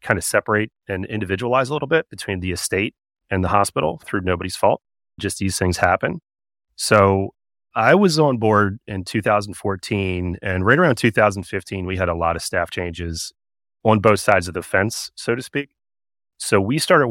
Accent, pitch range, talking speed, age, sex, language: American, 95-110 Hz, 180 wpm, 30-49, male, English